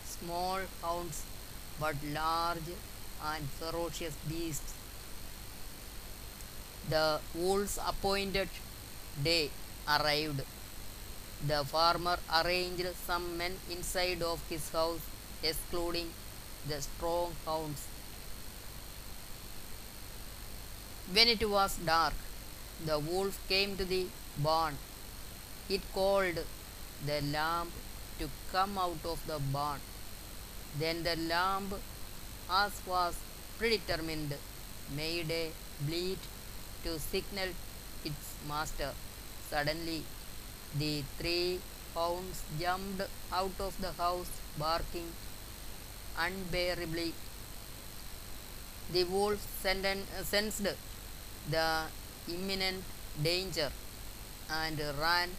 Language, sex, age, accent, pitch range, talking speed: Malayalam, female, 20-39, native, 105-180 Hz, 85 wpm